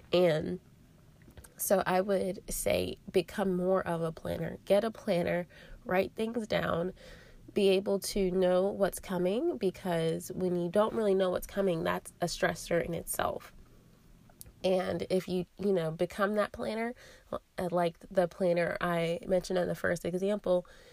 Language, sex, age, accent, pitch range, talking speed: English, female, 20-39, American, 175-200 Hz, 150 wpm